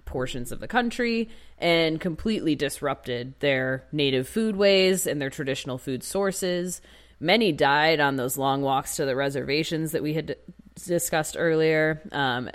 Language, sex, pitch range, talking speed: English, female, 130-150 Hz, 150 wpm